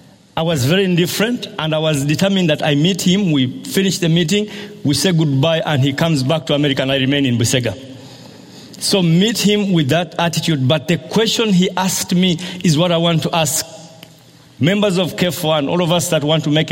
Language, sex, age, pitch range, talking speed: English, male, 50-69, 155-195 Hz, 210 wpm